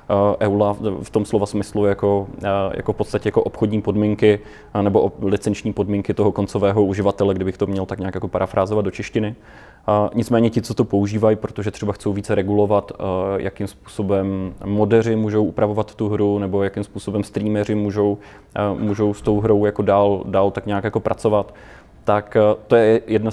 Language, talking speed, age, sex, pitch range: Czech, 165 wpm, 20-39, male, 100-115 Hz